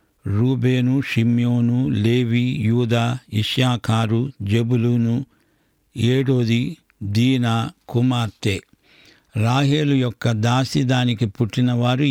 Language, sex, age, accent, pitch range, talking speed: English, male, 60-79, Indian, 115-135 Hz, 75 wpm